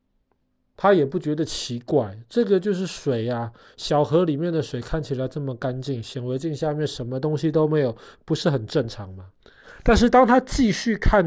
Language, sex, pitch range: Chinese, male, 125-165 Hz